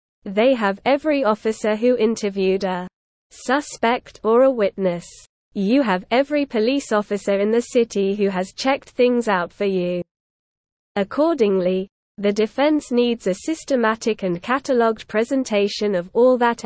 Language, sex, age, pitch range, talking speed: English, female, 20-39, 195-250 Hz, 135 wpm